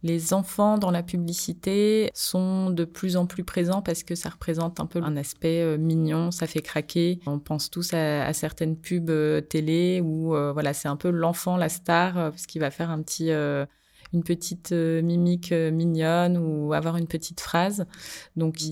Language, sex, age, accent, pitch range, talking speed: French, female, 20-39, French, 155-175 Hz, 190 wpm